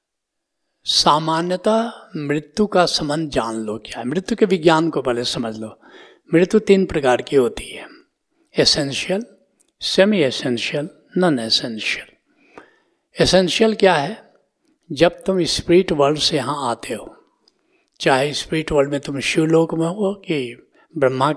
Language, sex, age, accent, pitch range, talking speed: Hindi, male, 60-79, native, 140-190 Hz, 130 wpm